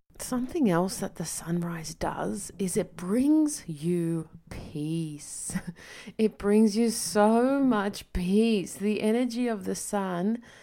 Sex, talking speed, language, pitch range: female, 125 wpm, English, 180-220 Hz